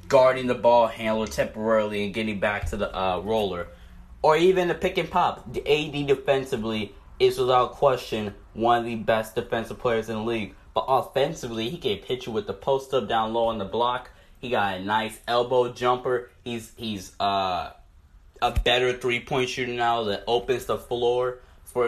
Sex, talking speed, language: male, 180 wpm, English